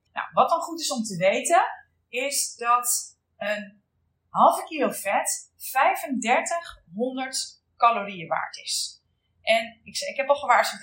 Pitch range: 220-285 Hz